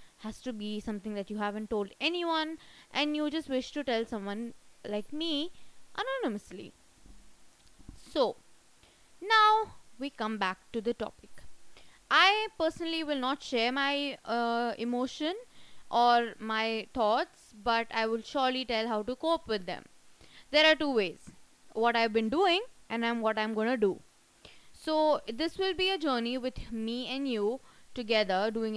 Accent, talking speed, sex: Indian, 150 wpm, female